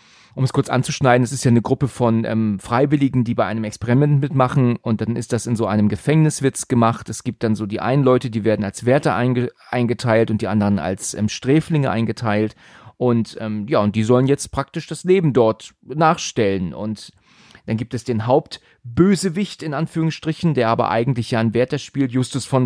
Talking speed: 200 wpm